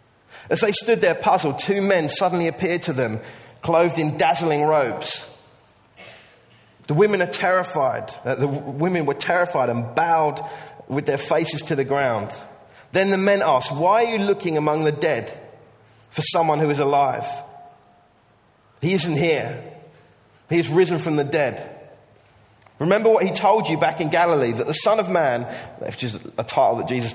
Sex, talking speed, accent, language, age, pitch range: male, 165 wpm, British, English, 30-49, 135-185 Hz